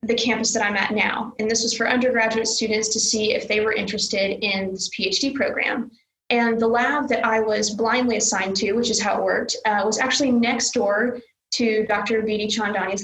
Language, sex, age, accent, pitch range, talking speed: English, female, 20-39, American, 210-235 Hz, 210 wpm